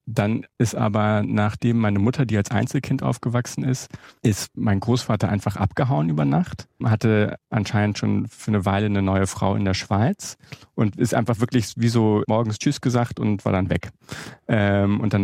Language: German